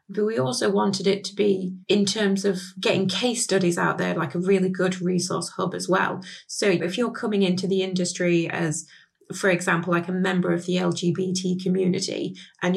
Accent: British